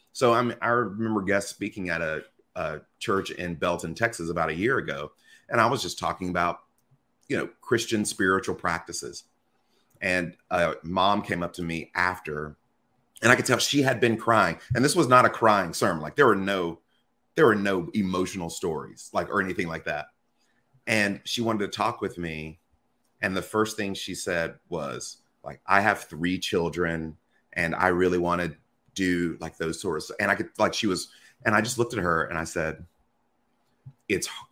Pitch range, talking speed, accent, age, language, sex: 85-105 Hz, 190 wpm, American, 30-49, English, male